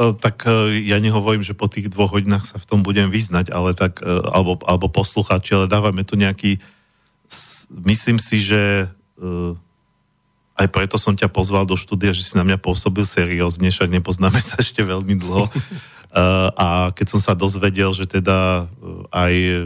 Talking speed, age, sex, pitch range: 160 wpm, 40-59, male, 90-105 Hz